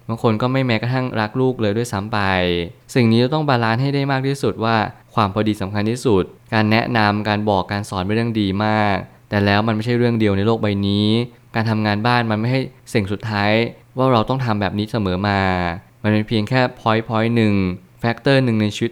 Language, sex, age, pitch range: Thai, male, 20-39, 100-120 Hz